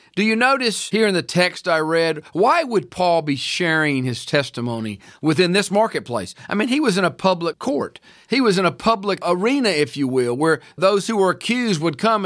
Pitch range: 150-200 Hz